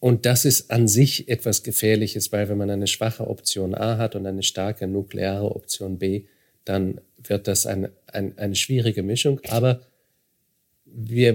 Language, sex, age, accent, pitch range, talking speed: German, male, 40-59, German, 100-120 Hz, 165 wpm